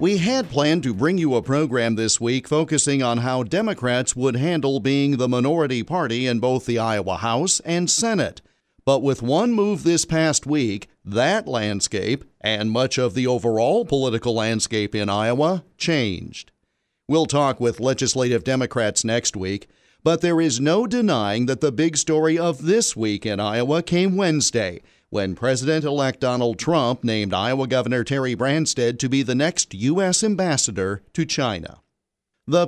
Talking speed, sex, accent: 160 wpm, male, American